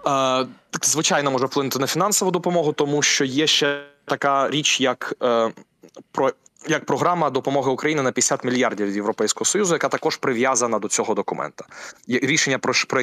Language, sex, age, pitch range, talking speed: Ukrainian, male, 20-39, 115-150 Hz, 140 wpm